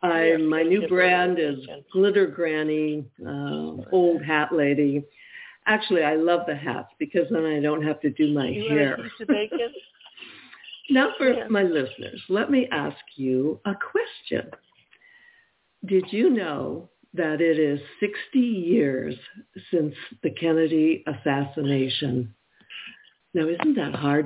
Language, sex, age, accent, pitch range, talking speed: English, female, 60-79, American, 145-200 Hz, 125 wpm